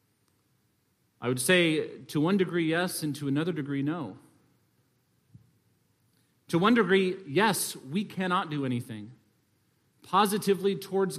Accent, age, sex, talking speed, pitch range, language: American, 40-59, male, 120 wpm, 135-190 Hz, English